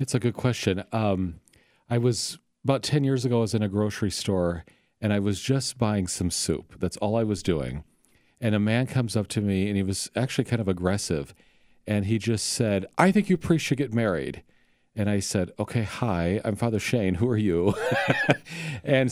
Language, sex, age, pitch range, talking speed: English, male, 40-59, 95-125 Hz, 205 wpm